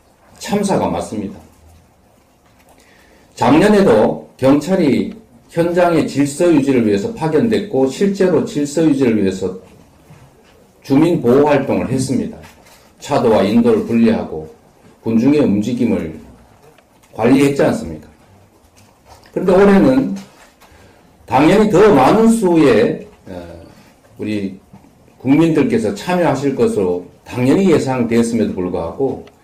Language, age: English, 40-59